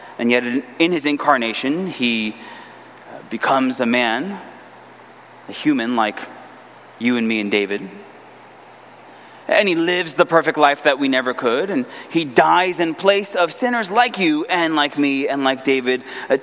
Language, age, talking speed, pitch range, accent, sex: English, 20-39, 155 wpm, 125-180 Hz, American, male